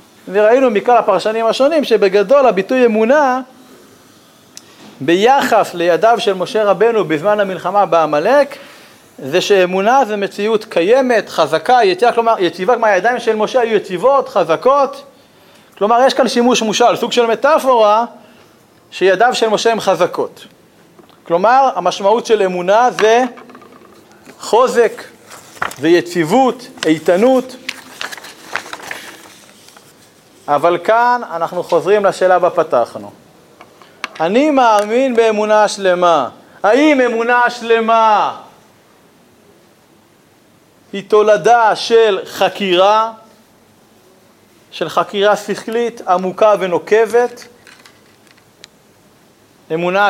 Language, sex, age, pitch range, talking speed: Hebrew, male, 40-59, 185-240 Hz, 90 wpm